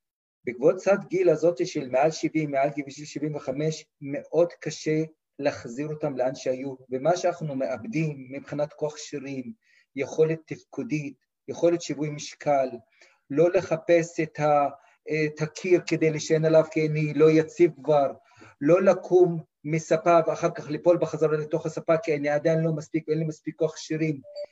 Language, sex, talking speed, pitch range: Hebrew, male, 145 wpm, 145-165 Hz